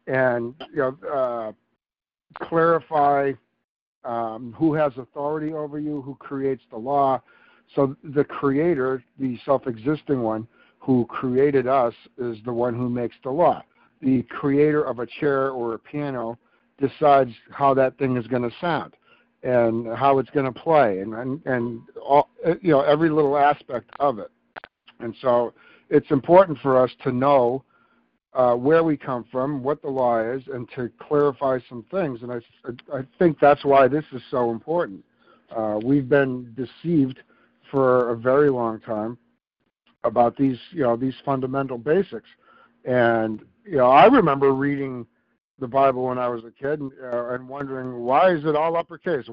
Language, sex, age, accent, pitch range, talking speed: English, male, 60-79, American, 125-150 Hz, 165 wpm